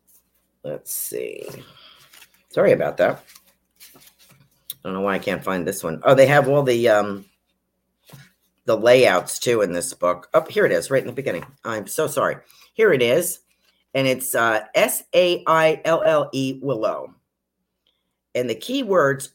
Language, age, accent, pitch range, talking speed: English, 50-69, American, 125-170 Hz, 150 wpm